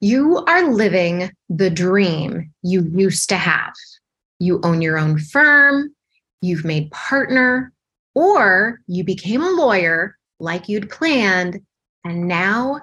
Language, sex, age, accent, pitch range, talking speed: English, female, 20-39, American, 175-255 Hz, 125 wpm